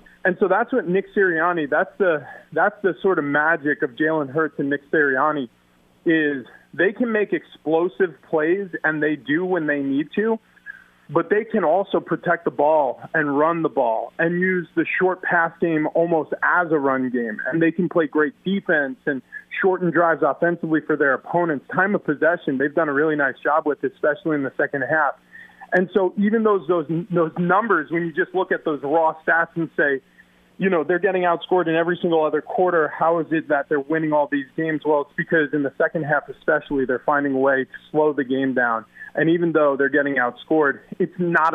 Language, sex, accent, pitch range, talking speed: English, male, American, 150-175 Hz, 205 wpm